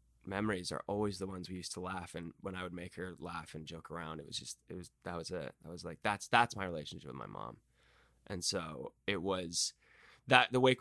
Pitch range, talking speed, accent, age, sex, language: 90-115 Hz, 240 wpm, American, 10-29, male, English